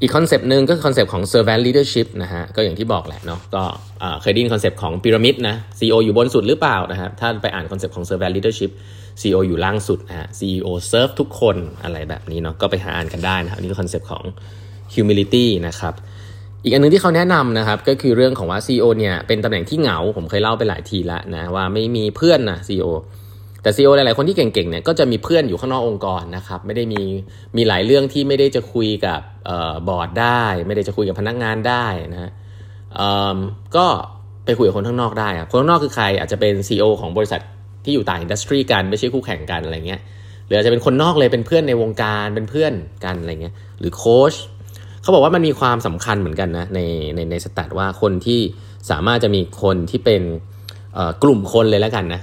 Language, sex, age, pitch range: Thai, male, 20-39, 95-115 Hz